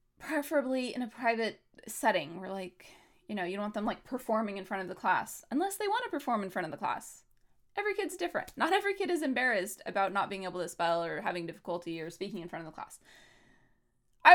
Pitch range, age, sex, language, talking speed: 190-275 Hz, 20-39, female, English, 230 wpm